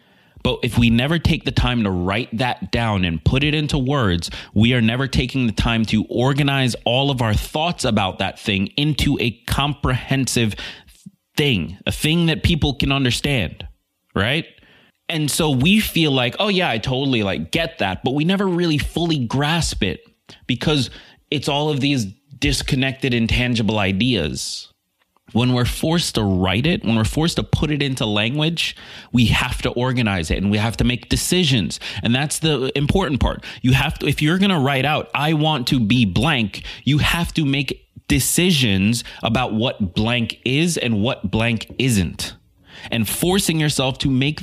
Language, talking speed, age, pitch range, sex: English, 175 wpm, 30-49, 110-145 Hz, male